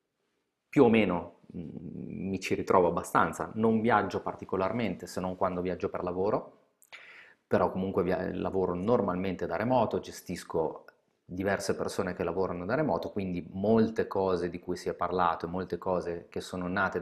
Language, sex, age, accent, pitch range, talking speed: Italian, male, 30-49, native, 90-100 Hz, 160 wpm